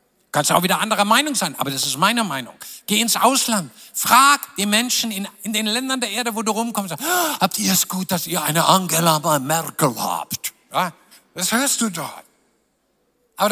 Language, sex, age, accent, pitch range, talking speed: German, male, 50-69, German, 190-235 Hz, 190 wpm